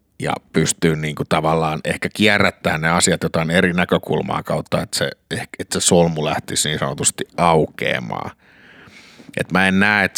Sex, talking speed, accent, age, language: male, 155 wpm, native, 50-69, Finnish